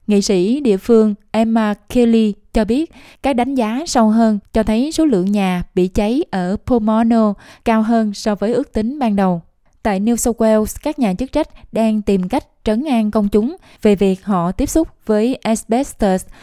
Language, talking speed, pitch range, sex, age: Vietnamese, 190 wpm, 195-235 Hz, female, 20-39